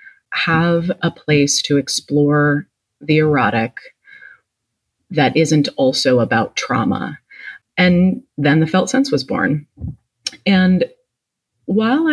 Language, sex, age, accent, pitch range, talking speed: English, female, 30-49, American, 135-175 Hz, 105 wpm